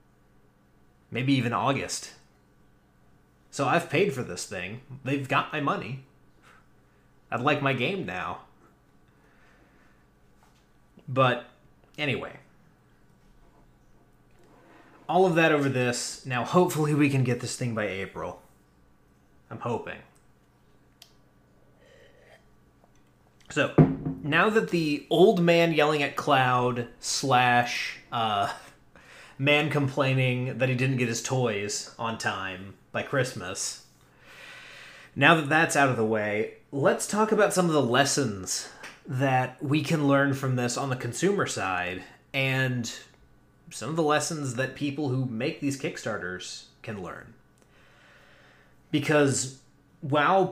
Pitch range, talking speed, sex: 125-150 Hz, 115 wpm, male